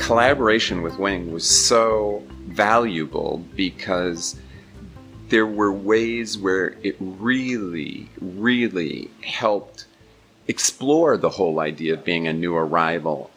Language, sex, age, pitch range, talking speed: English, male, 40-59, 80-105 Hz, 110 wpm